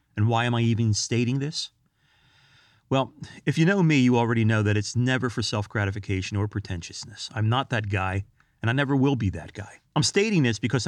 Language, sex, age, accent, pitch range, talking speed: English, male, 30-49, American, 100-130 Hz, 205 wpm